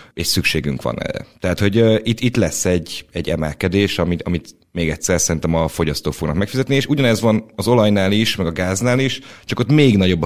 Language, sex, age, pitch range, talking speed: Hungarian, male, 30-49, 80-105 Hz, 205 wpm